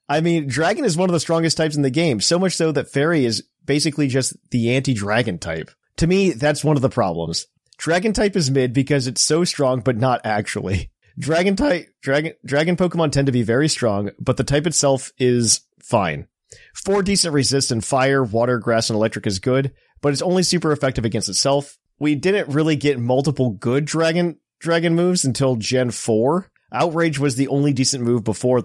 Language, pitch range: English, 120-160 Hz